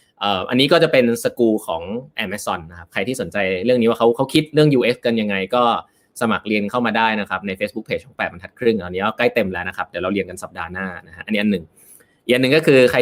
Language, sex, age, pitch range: Thai, male, 20-39, 110-155 Hz